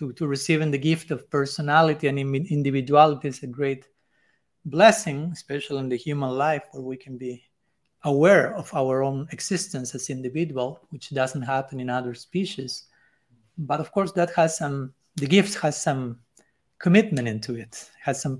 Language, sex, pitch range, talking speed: English, male, 130-160 Hz, 160 wpm